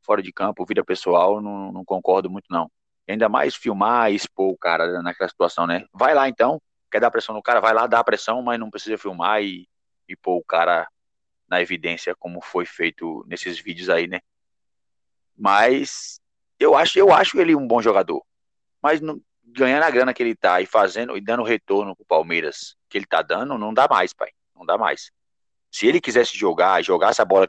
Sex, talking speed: male, 200 wpm